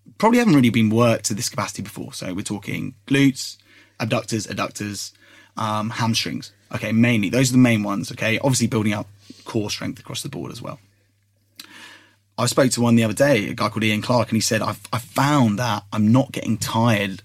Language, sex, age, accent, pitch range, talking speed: English, male, 20-39, British, 105-120 Hz, 200 wpm